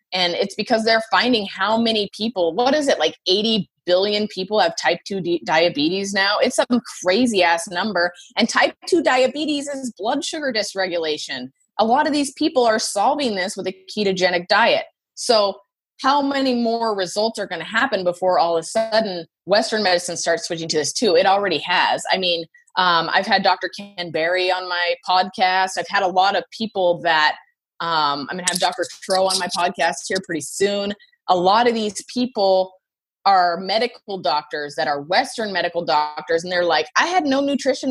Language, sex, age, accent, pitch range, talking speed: English, female, 20-39, American, 180-245 Hz, 190 wpm